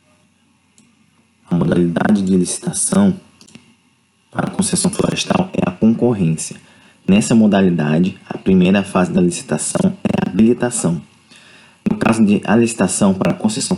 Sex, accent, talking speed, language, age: male, Brazilian, 125 wpm, Portuguese, 20-39